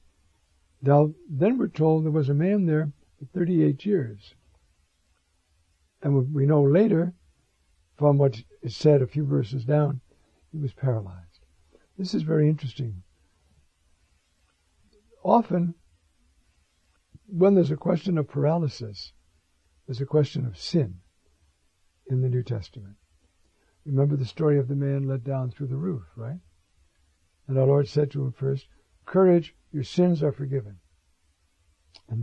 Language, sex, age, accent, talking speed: English, male, 60-79, American, 135 wpm